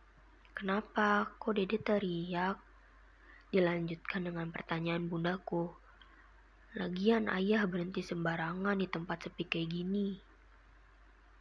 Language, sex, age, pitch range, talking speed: Indonesian, female, 20-39, 175-195 Hz, 90 wpm